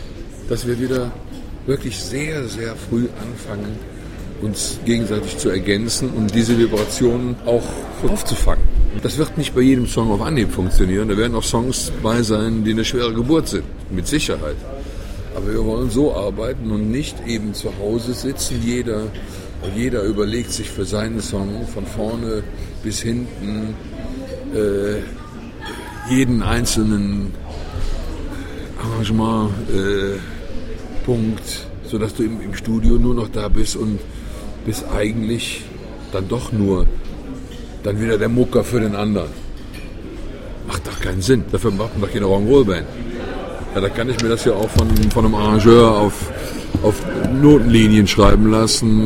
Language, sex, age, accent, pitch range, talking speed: German, male, 50-69, German, 100-115 Hz, 140 wpm